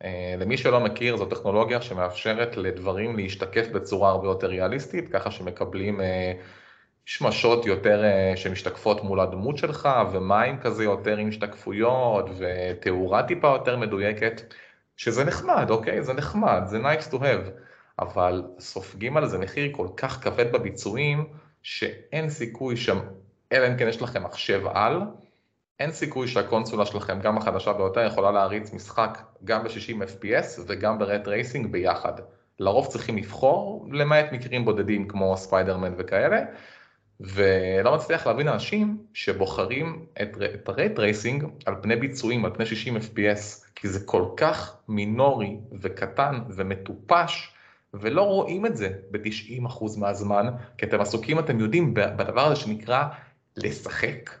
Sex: male